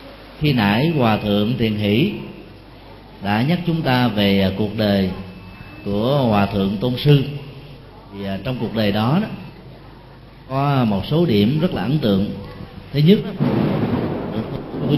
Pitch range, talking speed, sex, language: 105-145 Hz, 135 wpm, male, Vietnamese